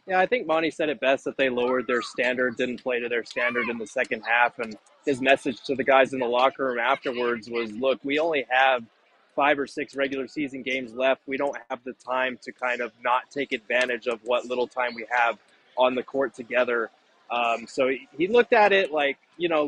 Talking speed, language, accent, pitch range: 230 wpm, English, American, 125-145 Hz